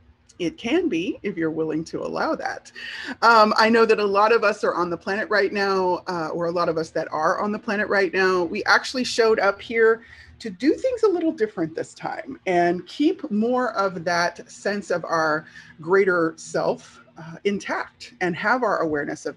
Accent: American